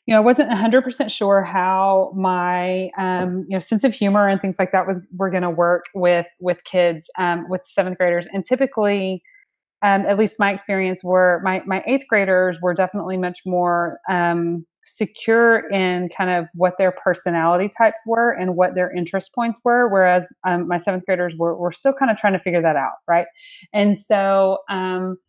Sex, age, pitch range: female, 20-39, 175-200 Hz